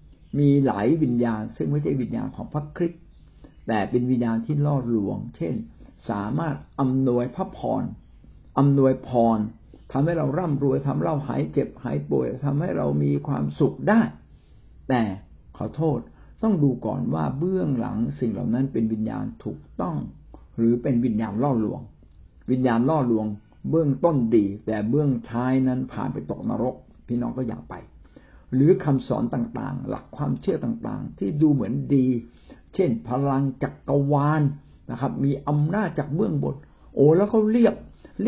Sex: male